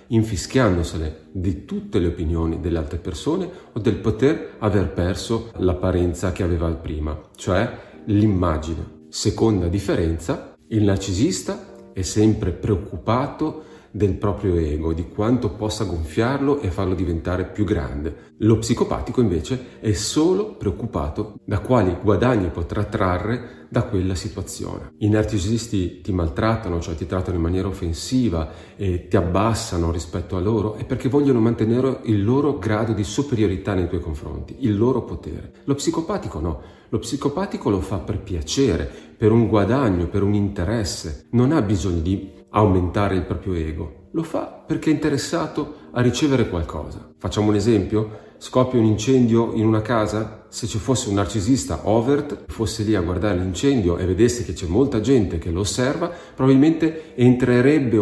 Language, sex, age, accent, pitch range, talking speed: Italian, male, 40-59, native, 90-115 Hz, 150 wpm